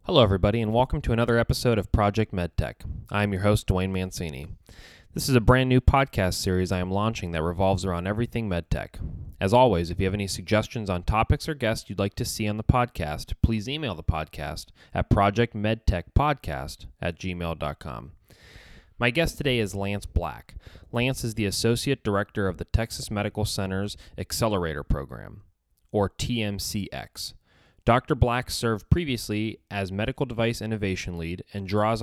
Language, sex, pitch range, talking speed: English, male, 90-115 Hz, 165 wpm